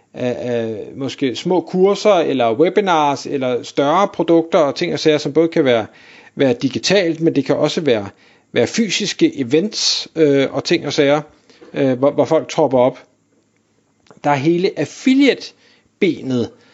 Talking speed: 160 wpm